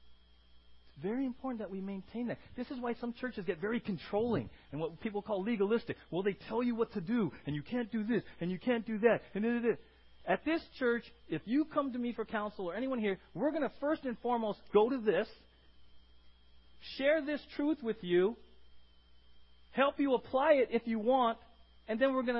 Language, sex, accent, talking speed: English, male, American, 205 wpm